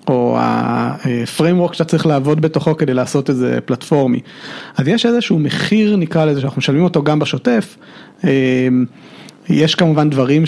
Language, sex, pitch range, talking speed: Hebrew, male, 135-175 Hz, 135 wpm